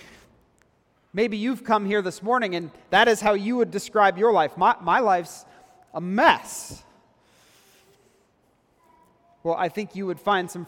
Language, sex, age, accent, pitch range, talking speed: English, male, 30-49, American, 155-200 Hz, 150 wpm